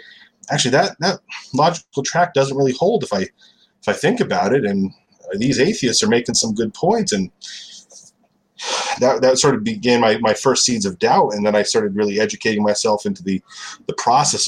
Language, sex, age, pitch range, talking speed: English, male, 30-49, 95-130 Hz, 190 wpm